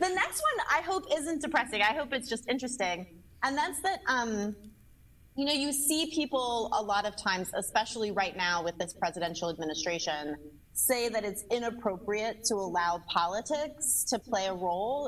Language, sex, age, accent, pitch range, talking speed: English, female, 30-49, American, 180-260 Hz, 170 wpm